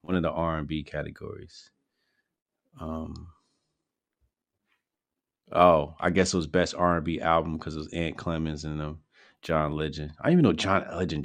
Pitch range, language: 80-95 Hz, English